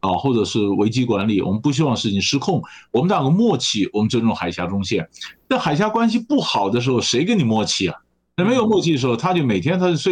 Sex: male